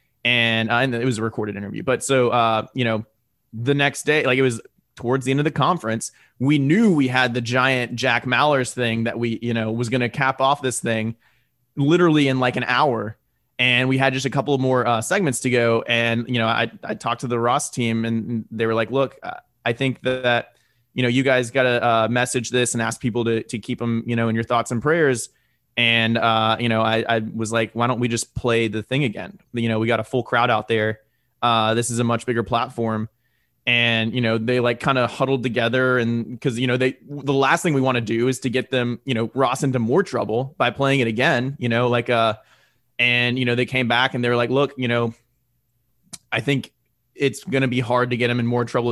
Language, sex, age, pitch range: English, male, 20-39, 115-130 Hz